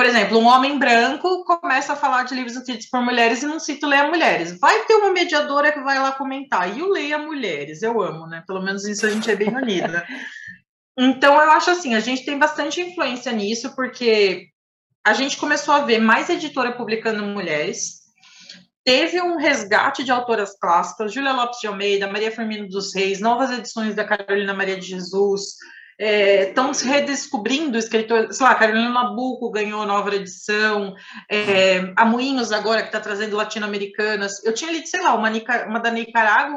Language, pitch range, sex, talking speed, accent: Portuguese, 200-270 Hz, female, 185 wpm, Brazilian